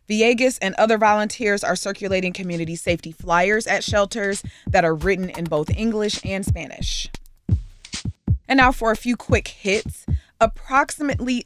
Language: English